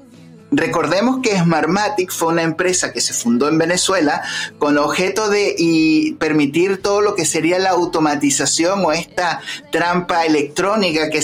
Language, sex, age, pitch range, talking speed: Spanish, male, 30-49, 150-190 Hz, 140 wpm